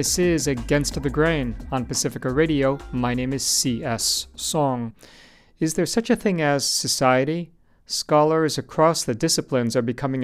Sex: male